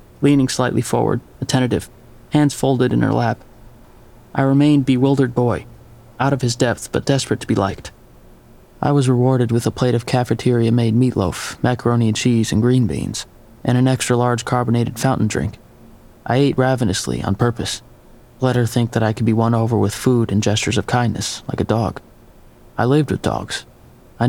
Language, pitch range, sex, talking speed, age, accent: English, 115-130 Hz, male, 175 wpm, 30-49, American